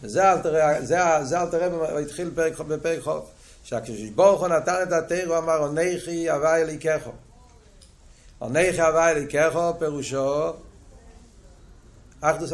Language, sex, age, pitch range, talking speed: Hebrew, male, 60-79, 150-195 Hz, 135 wpm